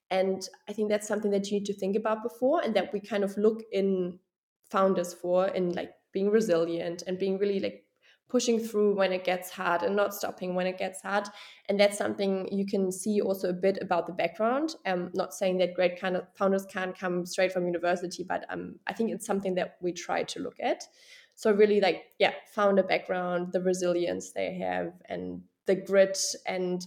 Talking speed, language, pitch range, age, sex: 210 wpm, English, 180-210 Hz, 20-39, female